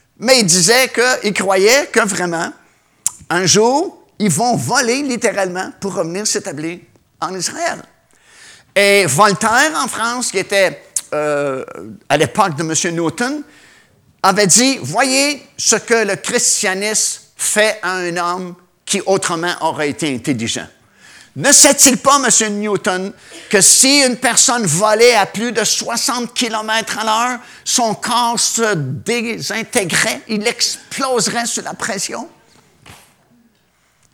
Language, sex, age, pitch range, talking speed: French, male, 50-69, 175-240 Hz, 130 wpm